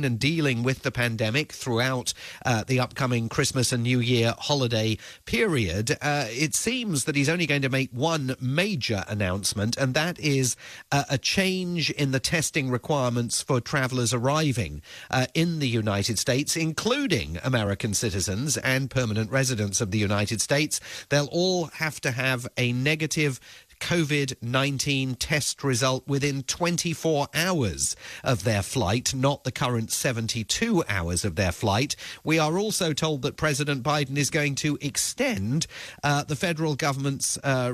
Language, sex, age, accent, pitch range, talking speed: English, male, 40-59, British, 120-150 Hz, 150 wpm